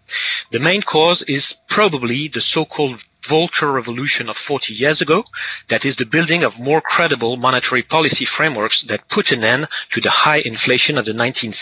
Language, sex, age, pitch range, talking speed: English, male, 30-49, 125-160 Hz, 170 wpm